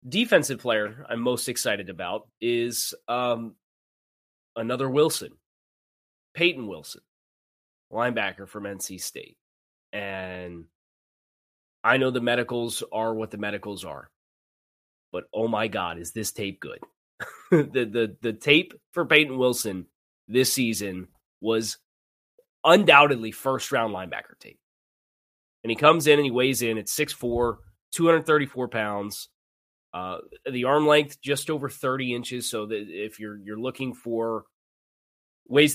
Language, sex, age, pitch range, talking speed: English, male, 20-39, 105-135 Hz, 125 wpm